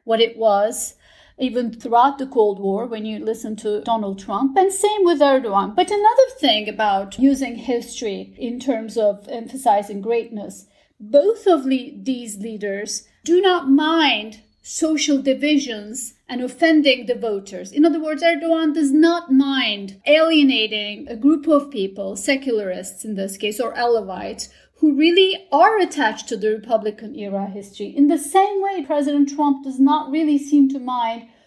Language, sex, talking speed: English, female, 155 wpm